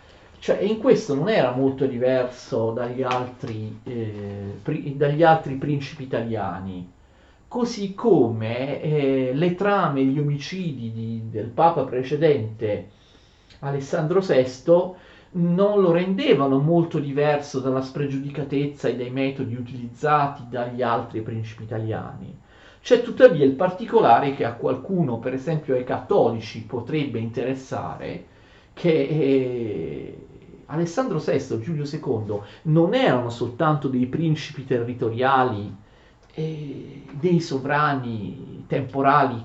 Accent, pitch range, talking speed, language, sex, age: native, 115-155 Hz, 105 wpm, Italian, male, 40-59